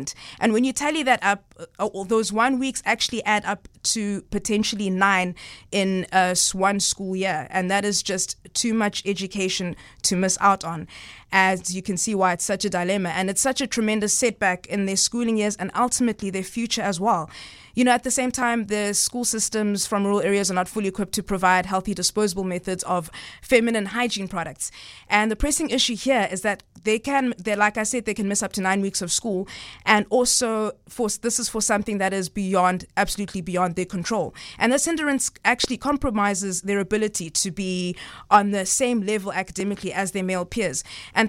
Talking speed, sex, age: 200 wpm, female, 20-39